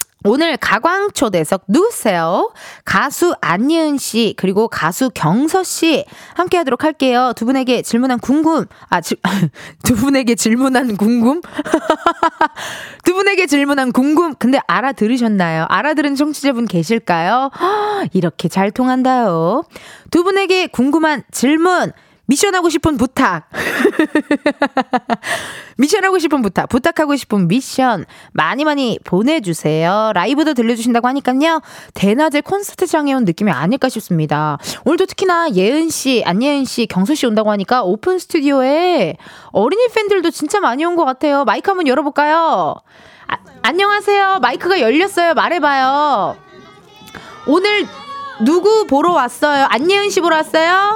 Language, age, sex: Korean, 20-39, female